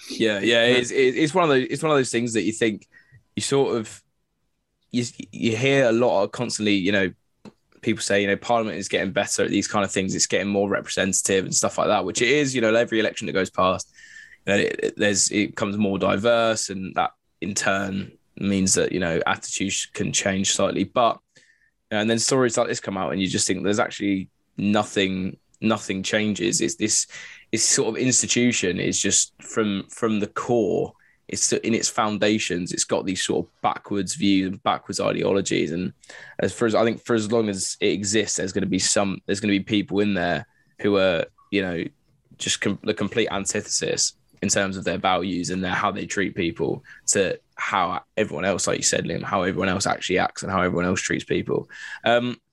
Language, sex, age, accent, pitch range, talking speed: English, male, 10-29, British, 100-120 Hz, 210 wpm